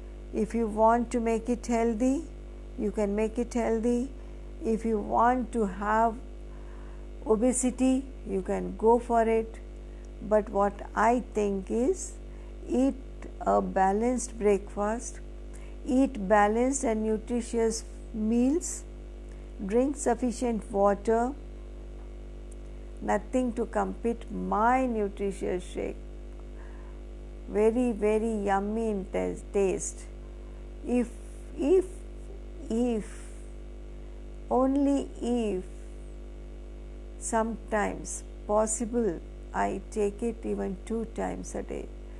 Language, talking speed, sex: Hindi, 95 wpm, female